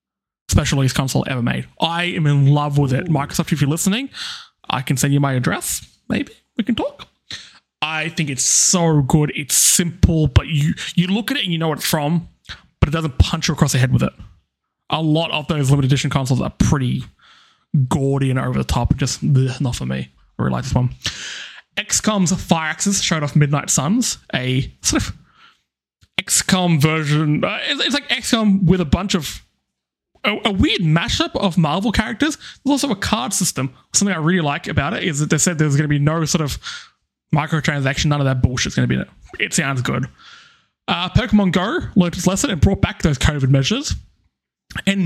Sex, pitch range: male, 135-180 Hz